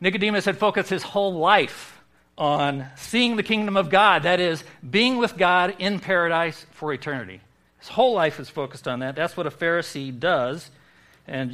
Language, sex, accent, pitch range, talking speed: English, male, American, 135-180 Hz, 175 wpm